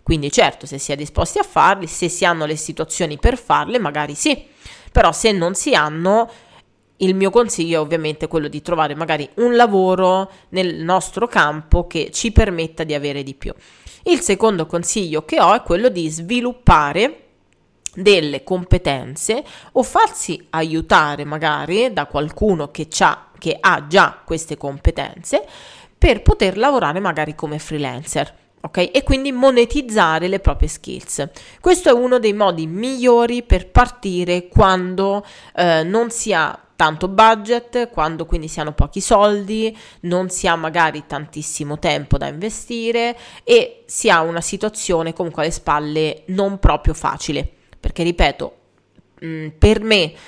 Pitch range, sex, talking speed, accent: 155-220 Hz, female, 145 wpm, native